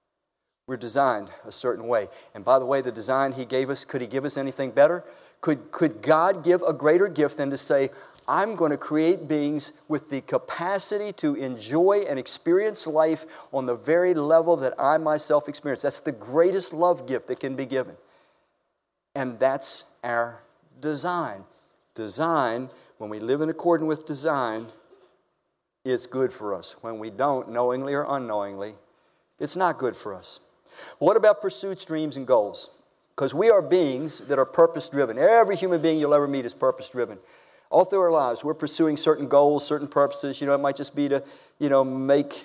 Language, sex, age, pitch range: English, male, 50-69, 130-160 Hz